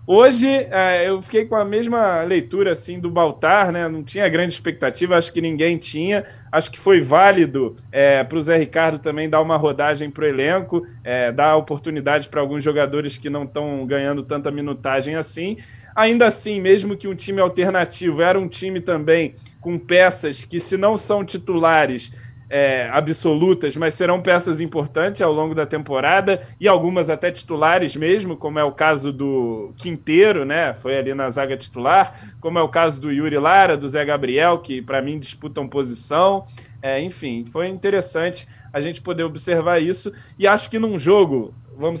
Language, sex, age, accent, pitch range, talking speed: Portuguese, male, 20-39, Brazilian, 140-185 Hz, 175 wpm